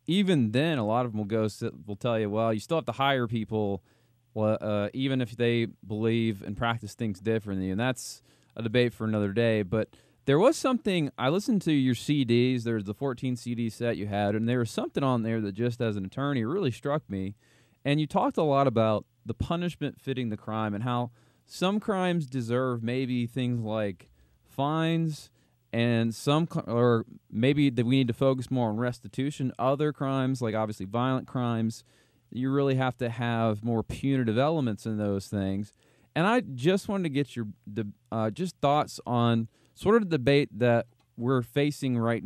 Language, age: English, 20-39